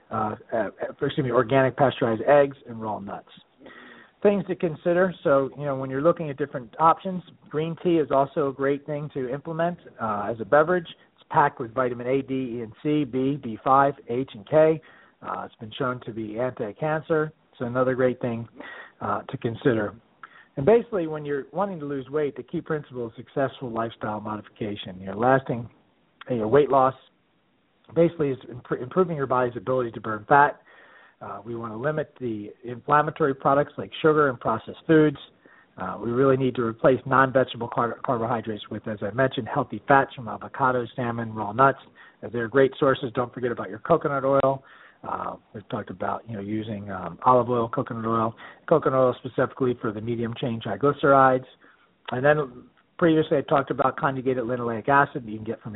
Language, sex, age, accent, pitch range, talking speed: English, male, 40-59, American, 115-145 Hz, 185 wpm